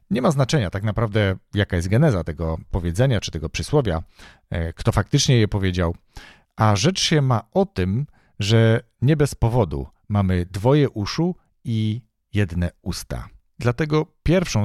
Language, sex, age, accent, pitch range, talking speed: Polish, male, 40-59, native, 95-125 Hz, 145 wpm